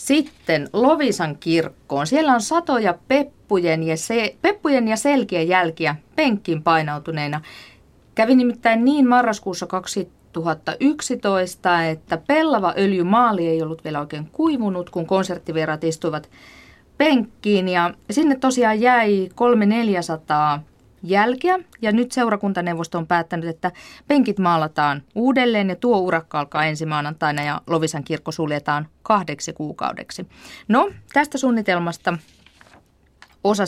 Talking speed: 110 wpm